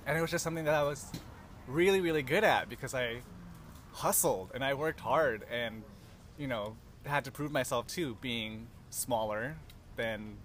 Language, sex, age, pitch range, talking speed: English, male, 20-39, 105-130 Hz, 170 wpm